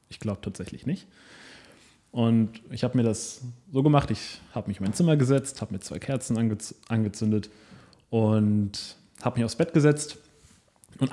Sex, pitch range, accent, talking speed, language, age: male, 105-125 Hz, German, 165 wpm, German, 20-39